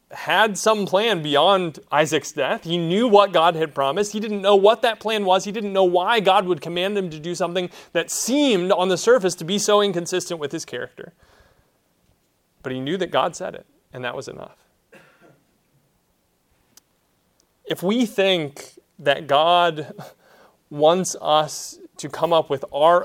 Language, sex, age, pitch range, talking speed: English, male, 30-49, 135-190 Hz, 170 wpm